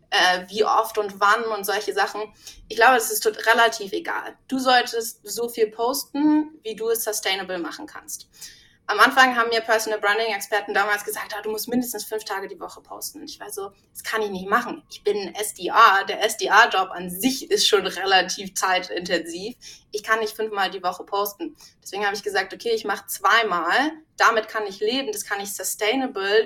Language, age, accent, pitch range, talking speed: German, 20-39, German, 195-245 Hz, 195 wpm